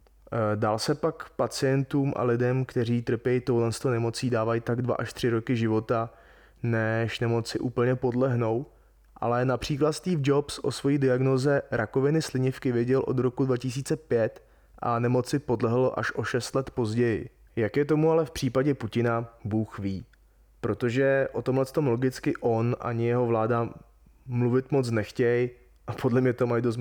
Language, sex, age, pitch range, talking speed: Czech, male, 20-39, 115-130 Hz, 155 wpm